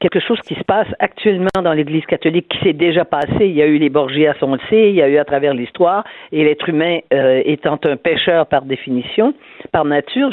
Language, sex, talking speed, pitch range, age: French, female, 230 wpm, 150-210 Hz, 50-69